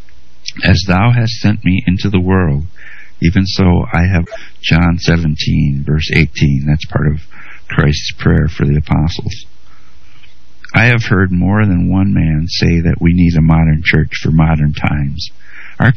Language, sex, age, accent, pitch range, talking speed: English, male, 60-79, American, 80-115 Hz, 160 wpm